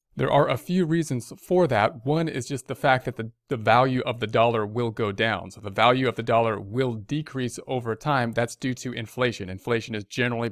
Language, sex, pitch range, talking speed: English, male, 110-130 Hz, 220 wpm